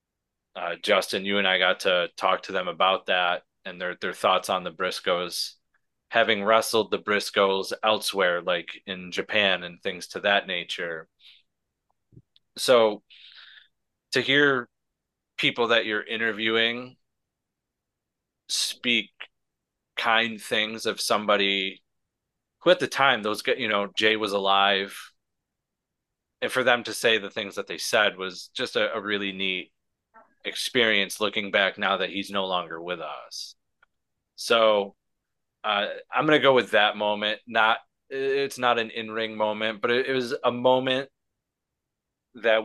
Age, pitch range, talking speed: 30-49, 100-120 Hz, 140 wpm